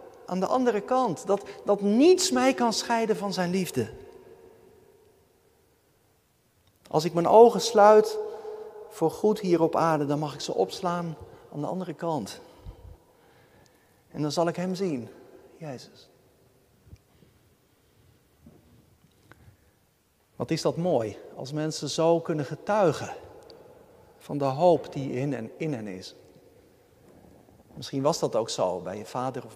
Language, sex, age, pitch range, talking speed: Dutch, male, 50-69, 130-215 Hz, 135 wpm